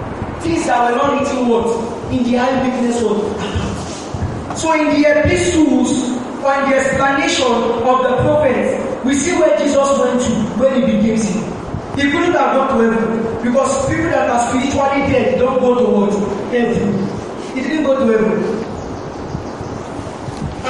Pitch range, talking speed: 230-275 Hz, 150 wpm